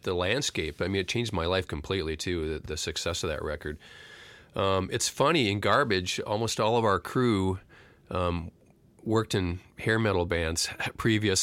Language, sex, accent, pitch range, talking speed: English, male, American, 85-115 Hz, 175 wpm